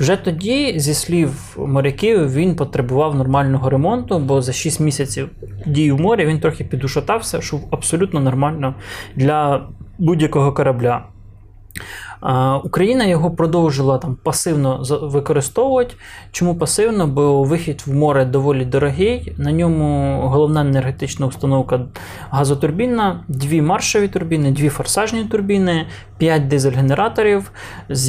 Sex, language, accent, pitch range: male, Ukrainian, native, 130-160 Hz